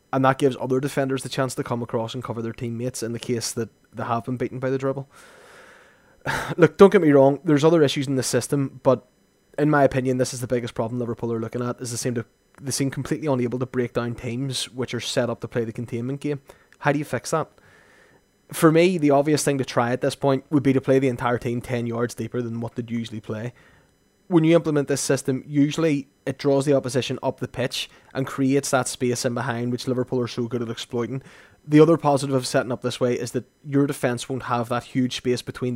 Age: 20-39